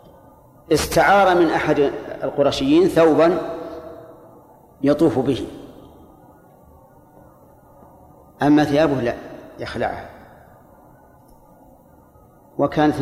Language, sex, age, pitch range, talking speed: Arabic, male, 40-59, 140-160 Hz, 55 wpm